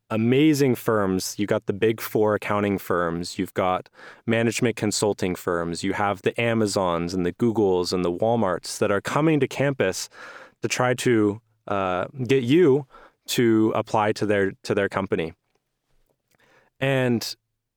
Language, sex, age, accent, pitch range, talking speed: English, male, 20-39, American, 105-130 Hz, 145 wpm